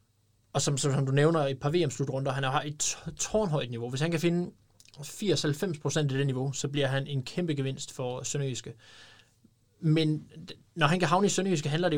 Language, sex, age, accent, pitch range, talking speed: Danish, male, 20-39, native, 130-155 Hz, 200 wpm